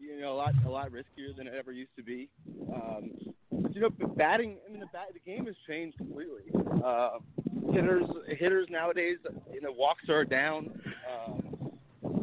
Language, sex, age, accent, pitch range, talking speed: English, male, 30-49, American, 135-165 Hz, 180 wpm